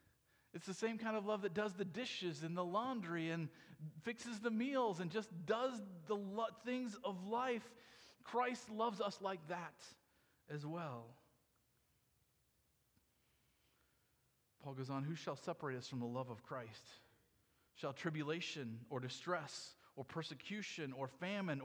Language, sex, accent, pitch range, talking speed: English, male, American, 165-245 Hz, 140 wpm